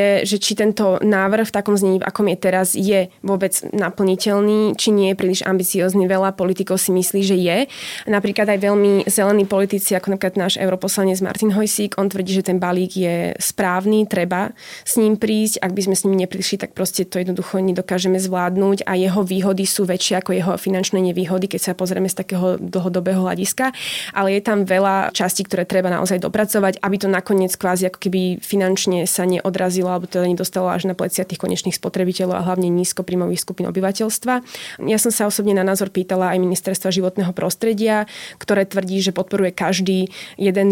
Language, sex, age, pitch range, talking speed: Slovak, female, 20-39, 185-200 Hz, 185 wpm